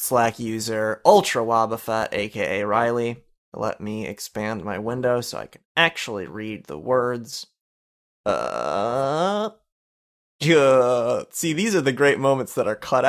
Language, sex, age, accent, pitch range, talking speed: English, male, 20-39, American, 110-150 Hz, 135 wpm